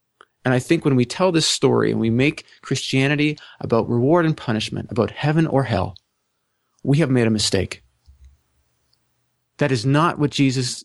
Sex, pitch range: male, 110-140 Hz